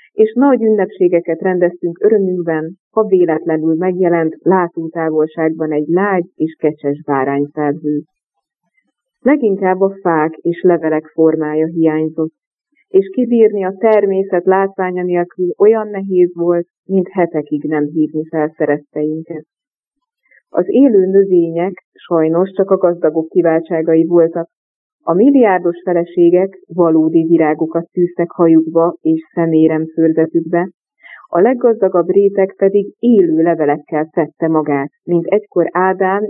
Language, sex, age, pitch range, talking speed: Hungarian, female, 30-49, 160-195 Hz, 105 wpm